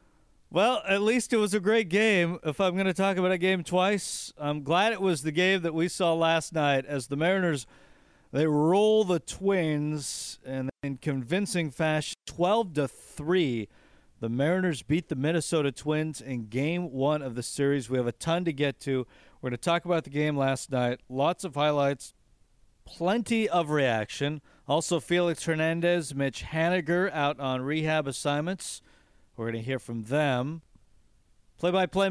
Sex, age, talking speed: male, 40-59, 170 wpm